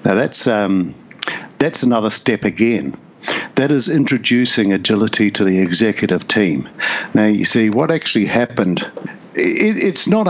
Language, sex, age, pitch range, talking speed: English, male, 60-79, 110-150 Hz, 140 wpm